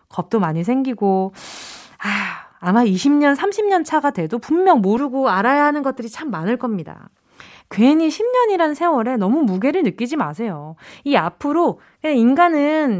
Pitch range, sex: 200-320 Hz, female